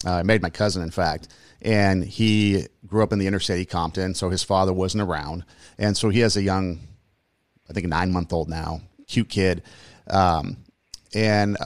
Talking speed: 190 wpm